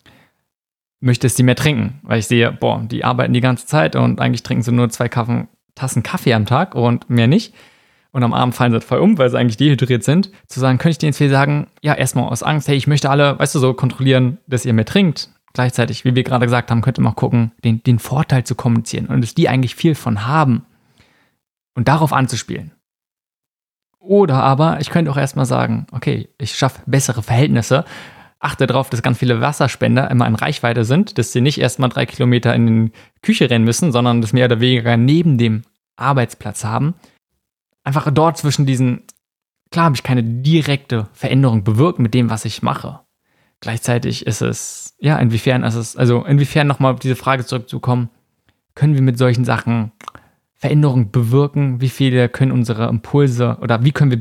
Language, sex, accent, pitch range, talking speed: German, male, German, 120-140 Hz, 195 wpm